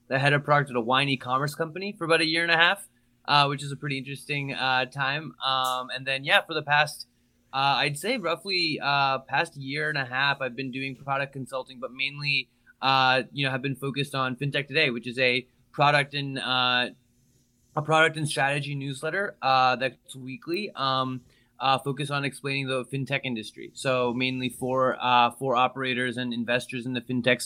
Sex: male